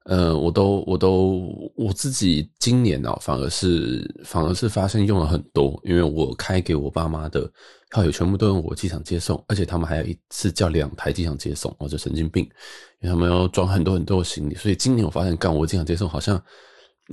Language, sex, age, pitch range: Chinese, male, 20-39, 80-100 Hz